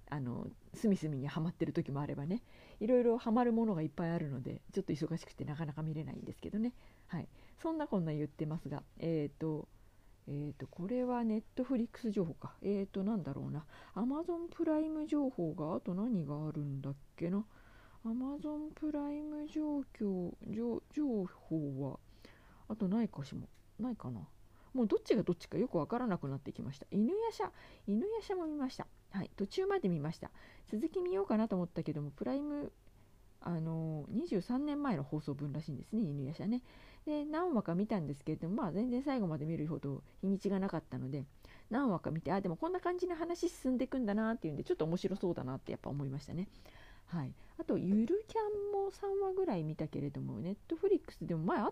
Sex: female